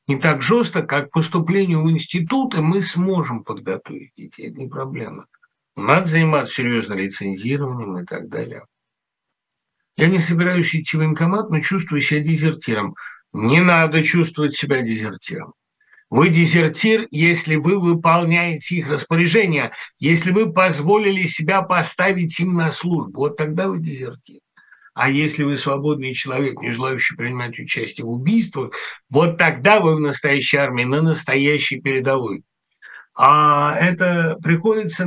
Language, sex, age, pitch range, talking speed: Russian, male, 60-79, 135-170 Hz, 135 wpm